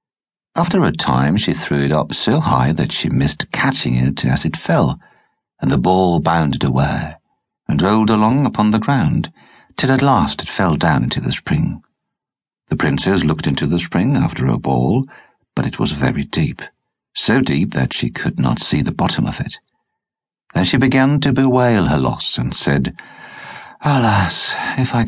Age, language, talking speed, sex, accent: 60-79, English, 175 wpm, male, British